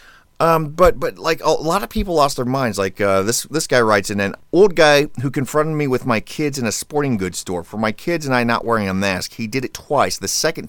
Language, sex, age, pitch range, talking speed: English, male, 30-49, 110-135 Hz, 265 wpm